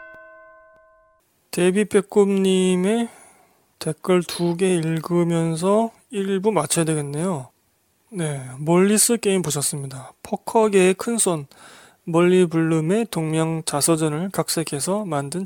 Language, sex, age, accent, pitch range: Korean, male, 20-39, native, 150-185 Hz